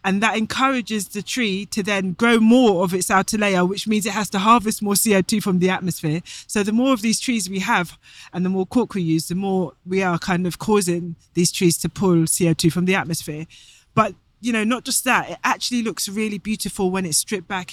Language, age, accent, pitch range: English, 20-39, British, 175-205 Hz